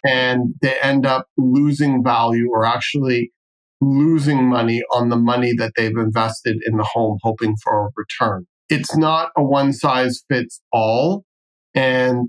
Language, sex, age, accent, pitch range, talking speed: English, male, 40-59, American, 115-135 Hz, 135 wpm